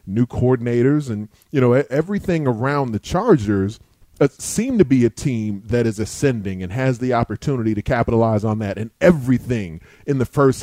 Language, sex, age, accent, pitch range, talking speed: English, male, 30-49, American, 115-135 Hz, 170 wpm